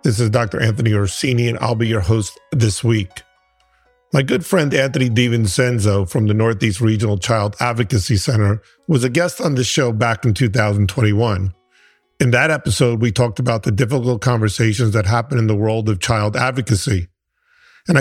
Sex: male